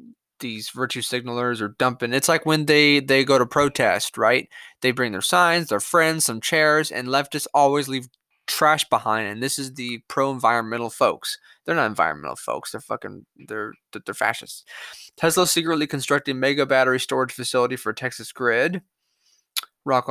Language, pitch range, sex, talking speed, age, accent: English, 125-160 Hz, male, 165 wpm, 20-39, American